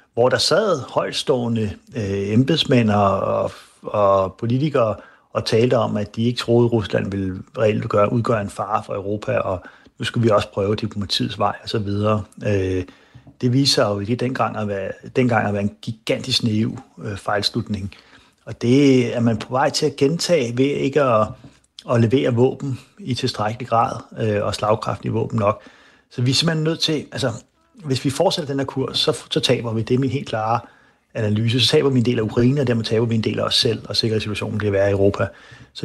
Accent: native